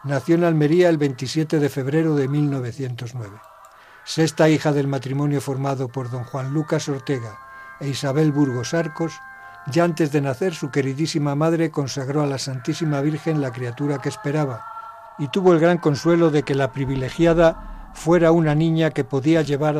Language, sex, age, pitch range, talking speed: Spanish, male, 60-79, 135-160 Hz, 165 wpm